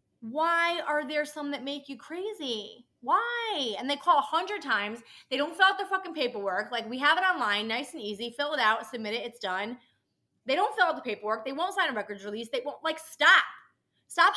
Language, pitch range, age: English, 225-300 Hz, 20-39